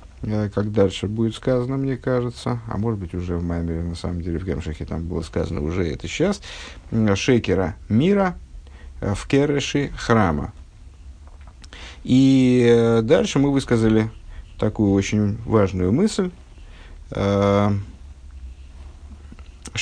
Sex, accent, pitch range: male, native, 85-115 Hz